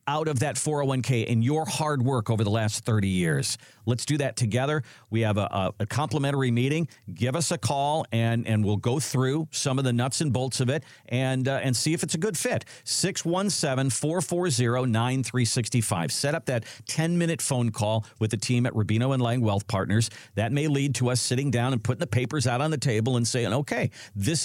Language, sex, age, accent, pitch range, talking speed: English, male, 50-69, American, 110-145 Hz, 210 wpm